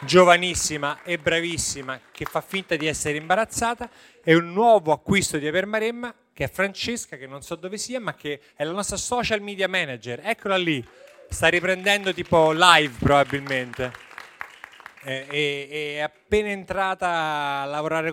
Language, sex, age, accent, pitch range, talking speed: Italian, male, 30-49, native, 130-175 Hz, 145 wpm